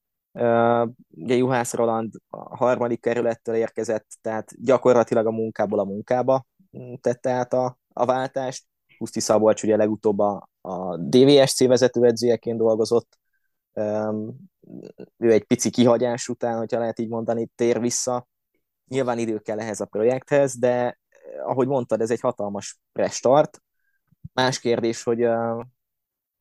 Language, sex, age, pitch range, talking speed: Hungarian, male, 20-39, 110-125 Hz, 130 wpm